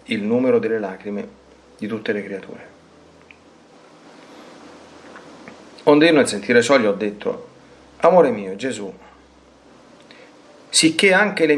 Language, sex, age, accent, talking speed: Italian, male, 40-59, native, 110 wpm